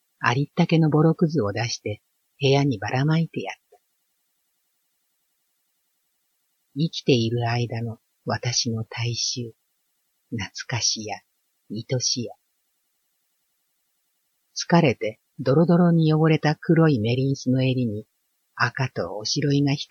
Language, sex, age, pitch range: Japanese, female, 50-69, 90-140 Hz